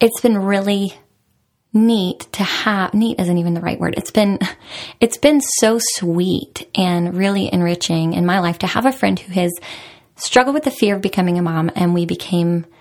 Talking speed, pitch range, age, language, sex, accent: 190 wpm, 175-215 Hz, 20-39, English, female, American